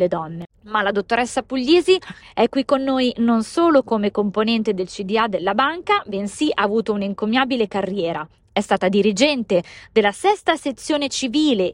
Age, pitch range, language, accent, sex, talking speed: 20-39, 200-270 Hz, Italian, native, female, 150 wpm